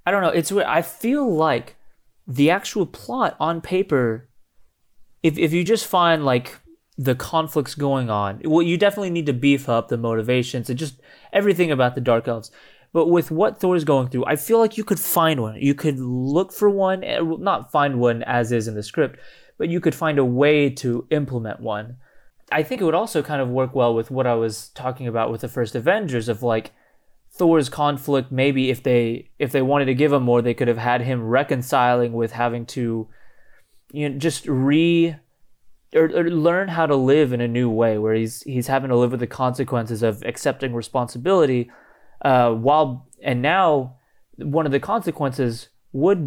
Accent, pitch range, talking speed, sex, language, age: American, 120-155 Hz, 195 wpm, male, English, 20-39